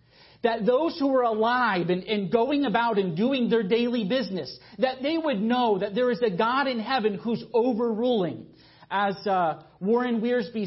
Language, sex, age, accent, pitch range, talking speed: English, male, 40-59, American, 200-245 Hz, 175 wpm